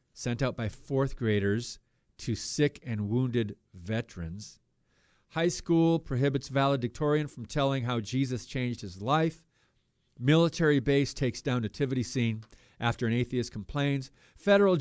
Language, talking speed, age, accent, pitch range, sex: English, 125 wpm, 50-69, American, 120-175 Hz, male